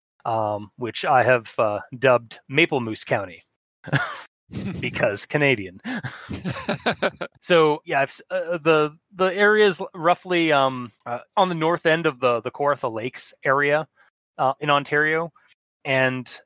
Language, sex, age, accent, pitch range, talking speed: English, male, 20-39, American, 130-160 Hz, 130 wpm